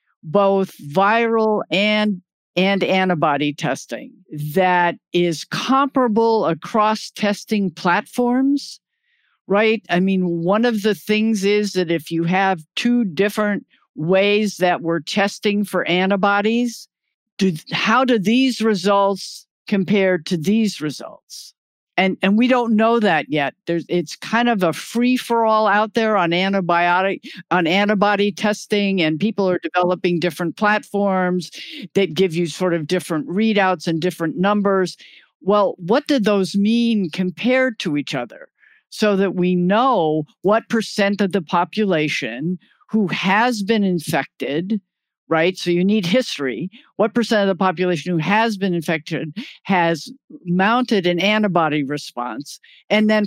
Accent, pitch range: American, 170-215 Hz